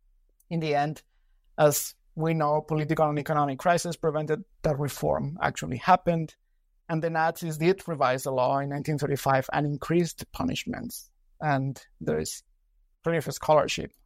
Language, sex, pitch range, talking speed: English, male, 140-170 Hz, 140 wpm